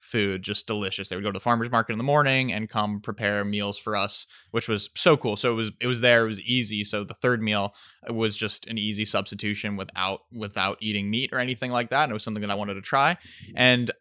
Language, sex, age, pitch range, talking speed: English, male, 20-39, 105-125 Hz, 255 wpm